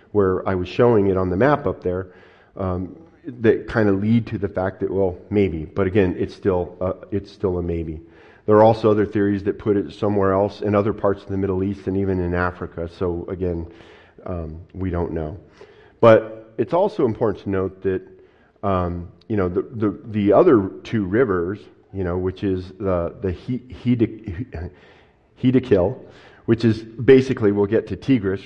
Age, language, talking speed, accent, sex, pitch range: 40-59, English, 195 wpm, American, male, 90-105 Hz